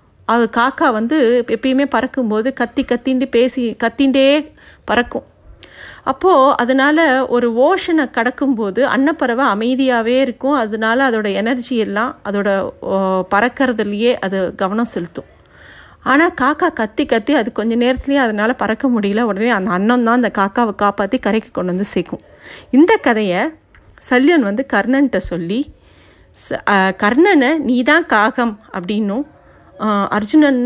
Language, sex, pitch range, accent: Tamil, female, 220-275 Hz, native